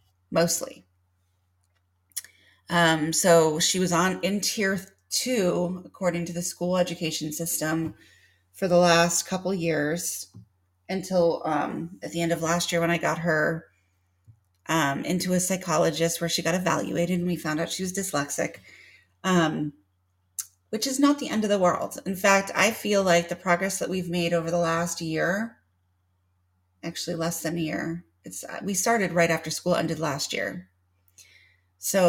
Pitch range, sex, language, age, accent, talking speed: 135-180 Hz, female, English, 30-49, American, 160 wpm